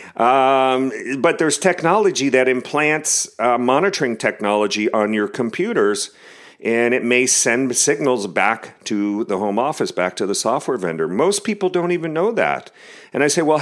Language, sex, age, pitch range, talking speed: English, male, 40-59, 115-160 Hz, 165 wpm